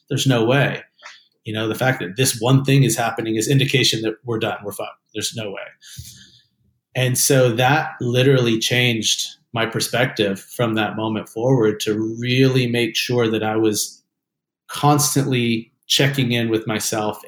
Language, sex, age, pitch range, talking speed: English, male, 30-49, 110-125 Hz, 160 wpm